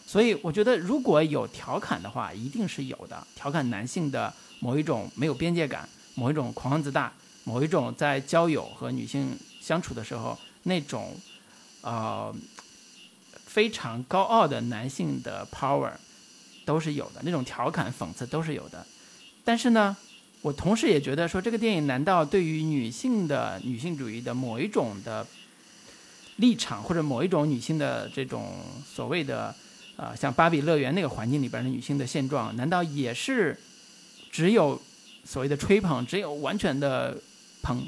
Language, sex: Chinese, male